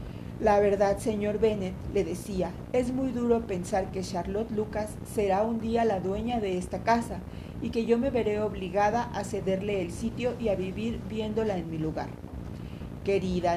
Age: 40-59